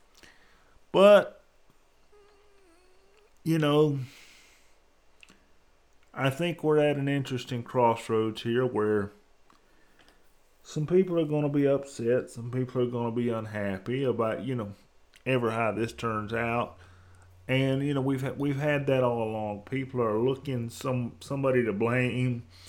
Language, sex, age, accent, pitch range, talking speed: English, male, 30-49, American, 100-130 Hz, 130 wpm